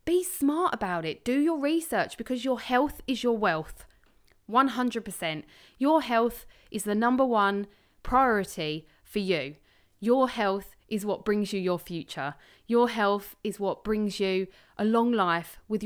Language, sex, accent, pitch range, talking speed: English, female, British, 170-230 Hz, 155 wpm